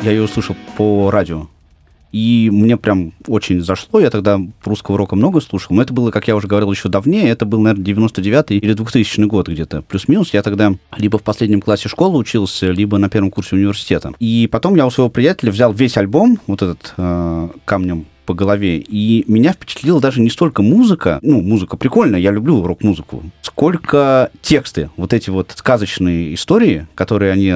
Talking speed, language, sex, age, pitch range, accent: 180 wpm, Russian, male, 30-49, 95-115 Hz, native